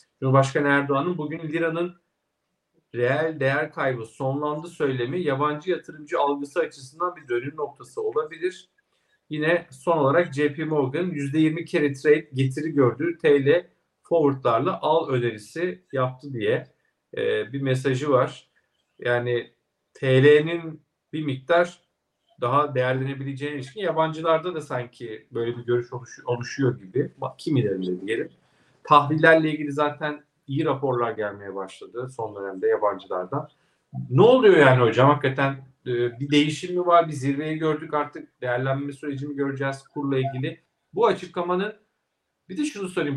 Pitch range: 130-165 Hz